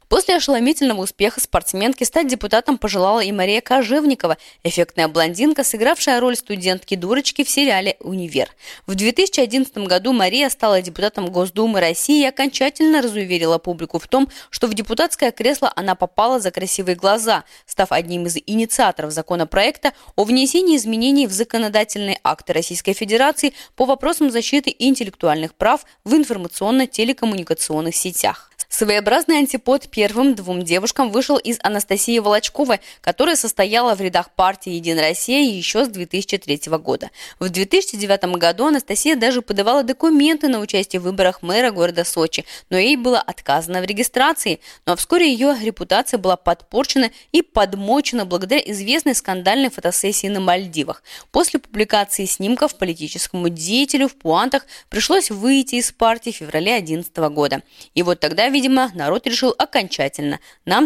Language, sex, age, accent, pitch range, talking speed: Russian, female, 20-39, native, 185-265 Hz, 140 wpm